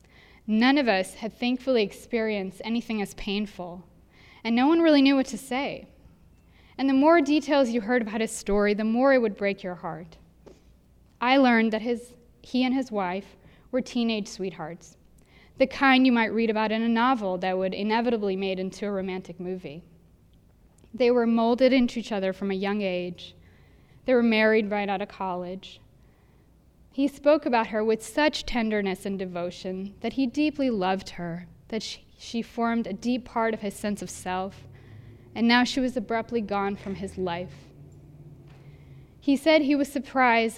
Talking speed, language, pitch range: 175 wpm, English, 185-245 Hz